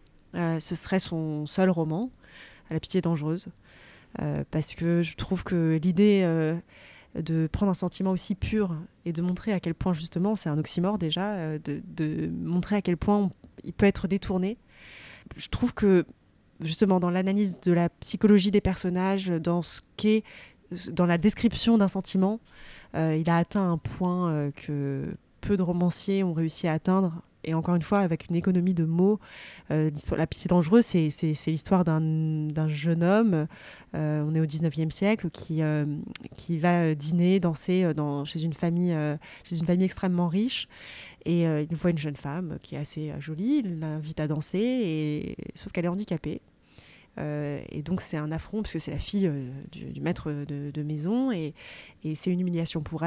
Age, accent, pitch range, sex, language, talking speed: 20-39, French, 155-190 Hz, female, French, 190 wpm